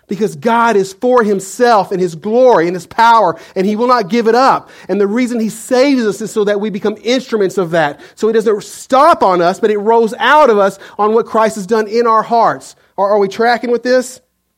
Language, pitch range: English, 155-215 Hz